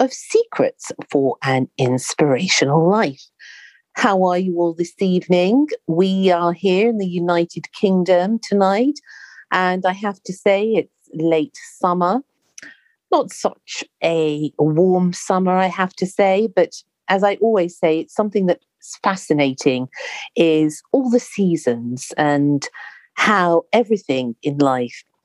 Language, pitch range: English, 155-210 Hz